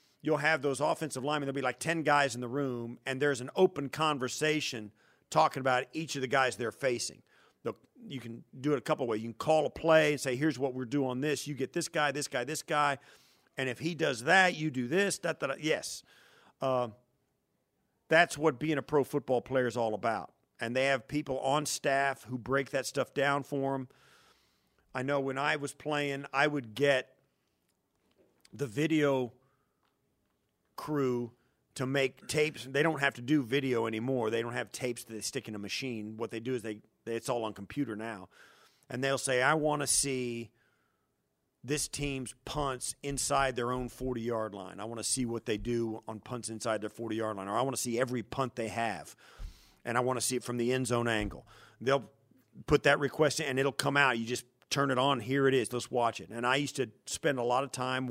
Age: 50-69